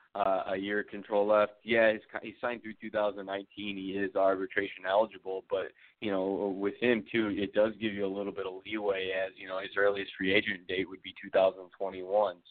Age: 20-39